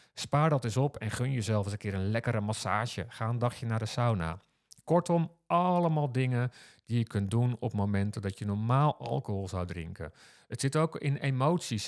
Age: 50-69